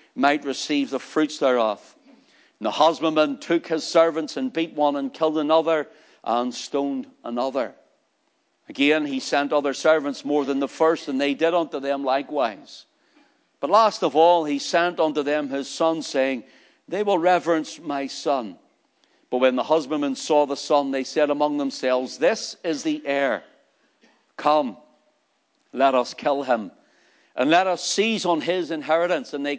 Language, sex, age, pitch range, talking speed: English, male, 60-79, 135-170 Hz, 160 wpm